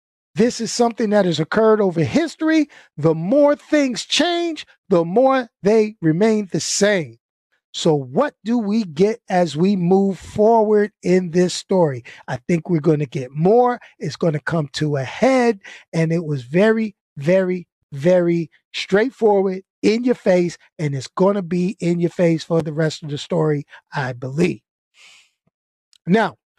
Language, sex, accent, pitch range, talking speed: English, male, American, 165-225 Hz, 160 wpm